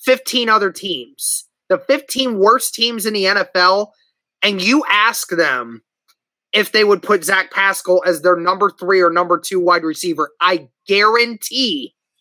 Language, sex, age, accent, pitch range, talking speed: English, male, 20-39, American, 185-260 Hz, 150 wpm